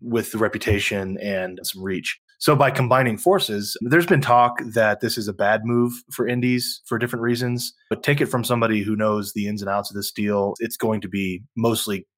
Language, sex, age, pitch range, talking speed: English, male, 20-39, 100-120 Hz, 210 wpm